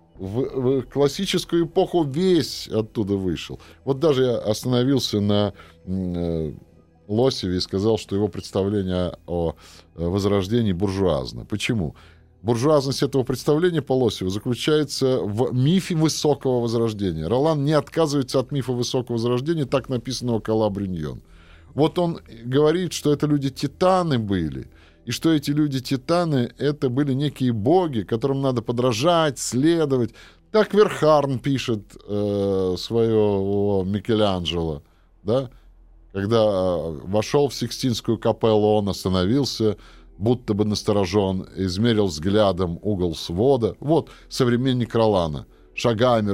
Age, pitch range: 20-39, 95-135 Hz